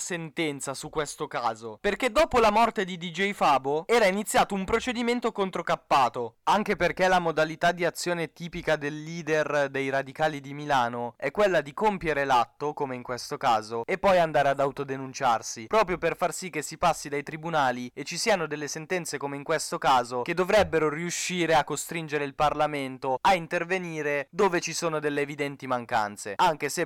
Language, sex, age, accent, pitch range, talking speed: Italian, male, 20-39, native, 145-190 Hz, 175 wpm